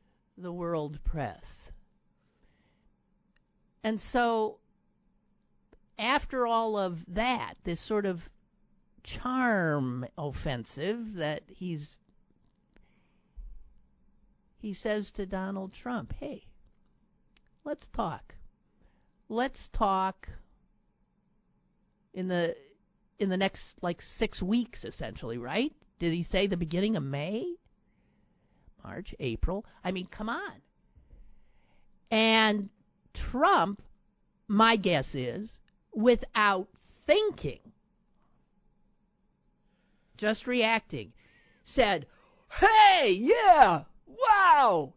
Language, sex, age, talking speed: English, male, 50-69, 85 wpm